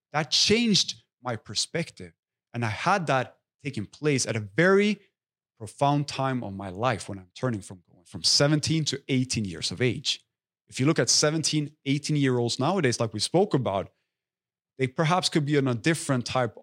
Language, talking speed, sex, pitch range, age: English, 175 wpm, male, 115-155 Hz, 30-49